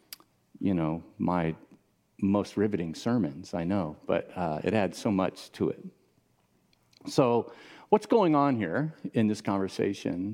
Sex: male